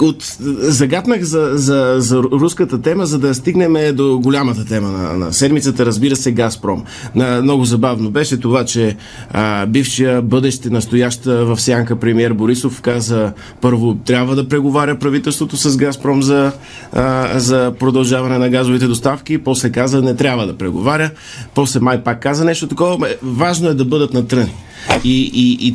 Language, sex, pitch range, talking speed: Bulgarian, male, 115-140 Hz, 155 wpm